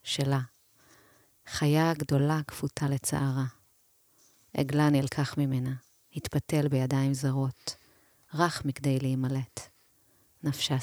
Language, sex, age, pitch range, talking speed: Hebrew, female, 30-49, 130-150 Hz, 85 wpm